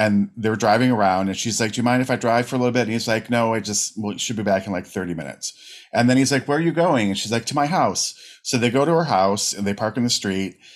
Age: 40-59